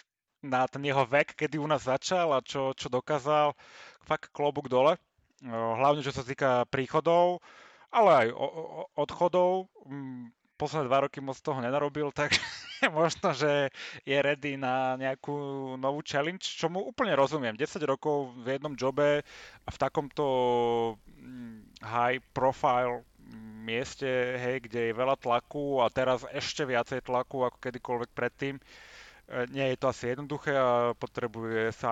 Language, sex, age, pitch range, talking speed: Slovak, male, 30-49, 120-145 Hz, 140 wpm